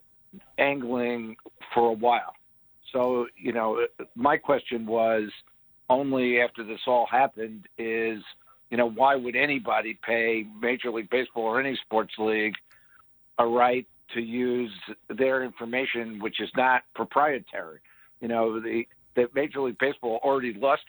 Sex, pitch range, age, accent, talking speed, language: male, 115-130 Hz, 60-79, American, 140 wpm, English